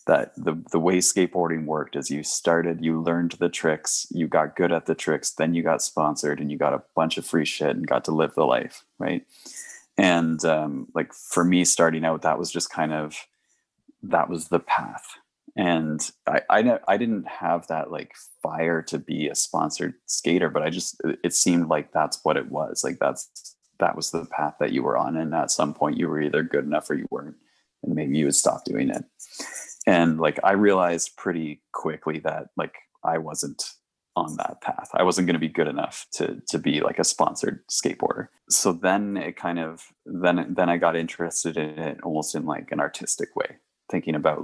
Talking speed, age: 210 wpm, 20-39